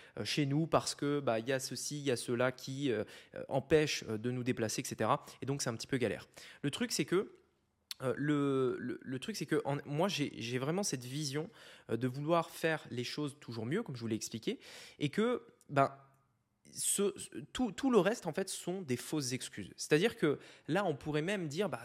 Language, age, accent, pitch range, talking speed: French, 20-39, French, 130-165 Hz, 215 wpm